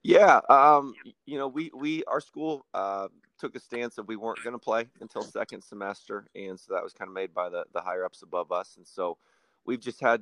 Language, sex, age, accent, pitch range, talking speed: English, male, 30-49, American, 95-110 Hz, 230 wpm